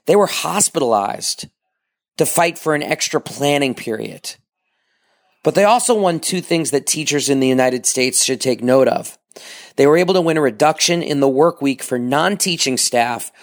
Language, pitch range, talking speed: English, 125-155 Hz, 180 wpm